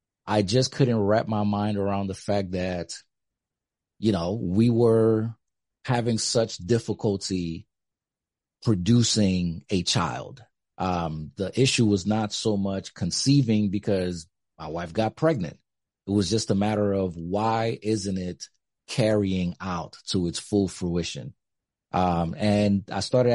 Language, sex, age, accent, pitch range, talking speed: English, male, 30-49, American, 90-110 Hz, 135 wpm